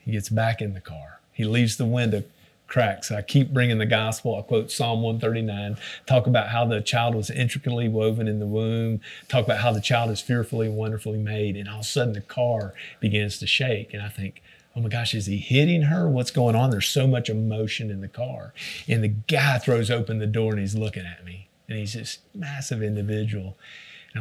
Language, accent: English, American